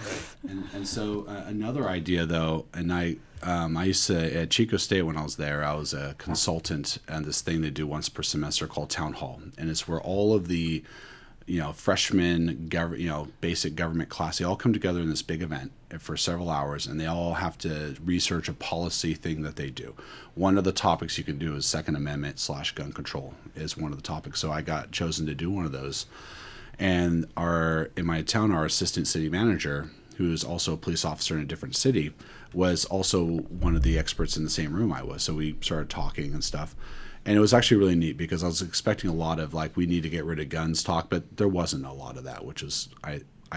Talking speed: 235 wpm